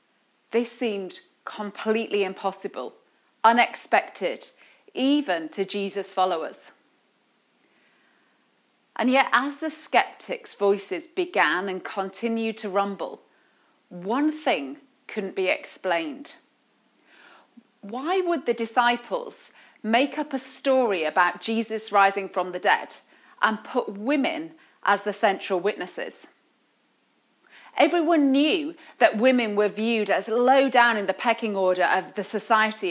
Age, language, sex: 30-49, English, female